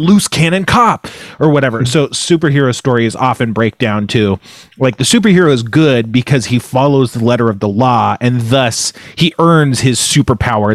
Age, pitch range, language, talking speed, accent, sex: 30-49, 110-140 Hz, English, 175 wpm, American, male